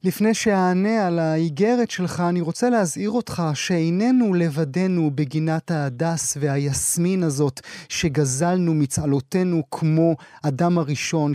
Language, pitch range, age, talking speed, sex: Hebrew, 160-220 Hz, 30-49, 105 wpm, male